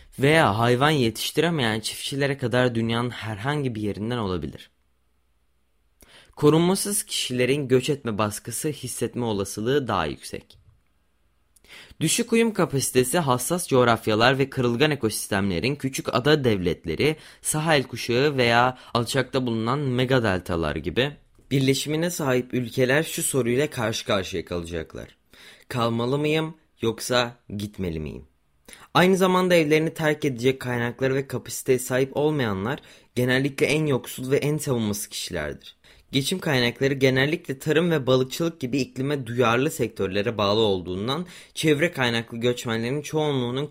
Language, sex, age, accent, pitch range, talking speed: Turkish, male, 20-39, native, 115-150 Hz, 115 wpm